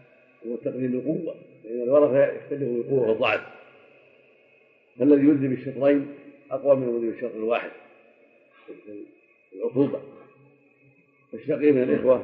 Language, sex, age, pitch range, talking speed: Arabic, male, 50-69, 120-145 Hz, 105 wpm